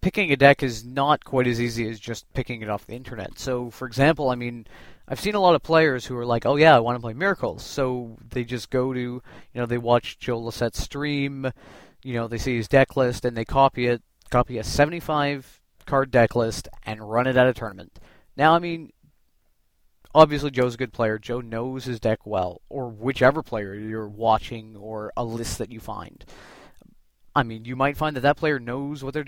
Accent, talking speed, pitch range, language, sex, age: American, 215 wpm, 110-135 Hz, English, male, 30-49